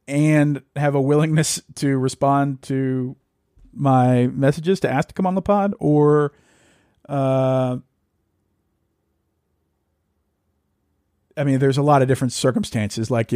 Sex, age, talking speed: male, 40-59, 120 wpm